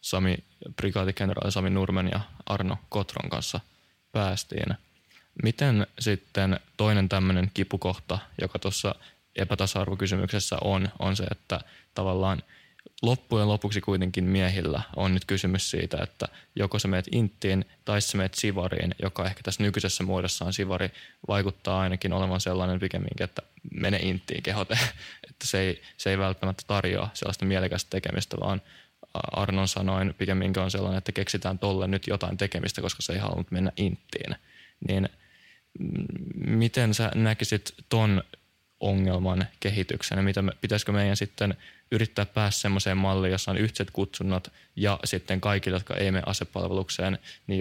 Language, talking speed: Finnish, 135 wpm